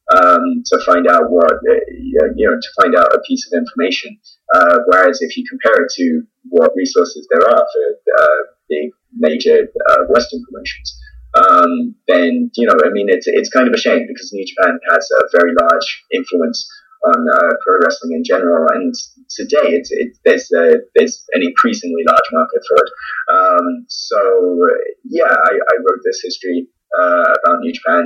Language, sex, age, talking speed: English, male, 20-39, 180 wpm